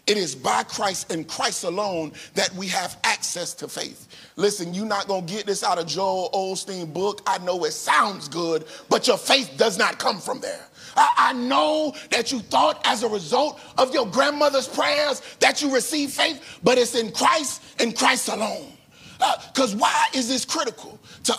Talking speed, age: 190 wpm, 40-59